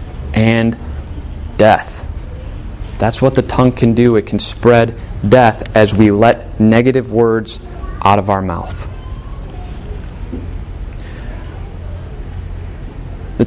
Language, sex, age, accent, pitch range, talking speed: English, male, 30-49, American, 85-125 Hz, 100 wpm